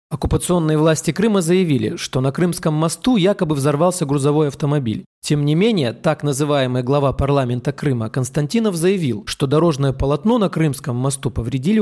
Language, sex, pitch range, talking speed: Russian, male, 135-170 Hz, 145 wpm